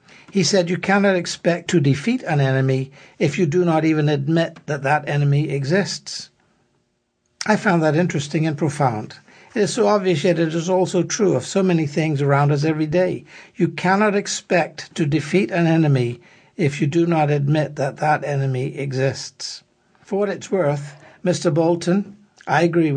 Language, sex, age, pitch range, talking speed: English, male, 60-79, 140-175 Hz, 170 wpm